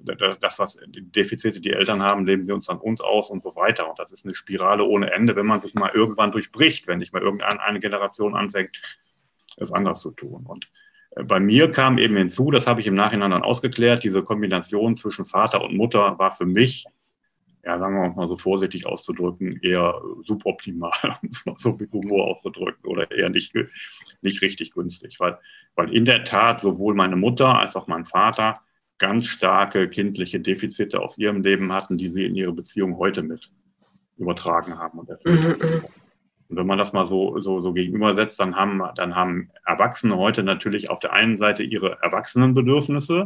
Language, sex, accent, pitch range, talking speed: German, male, German, 95-125 Hz, 185 wpm